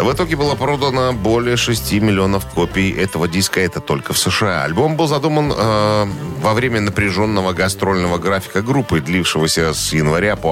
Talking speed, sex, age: 160 wpm, male, 10-29